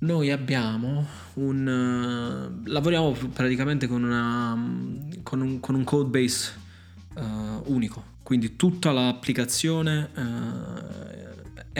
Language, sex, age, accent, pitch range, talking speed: Italian, male, 20-39, native, 110-125 Hz, 95 wpm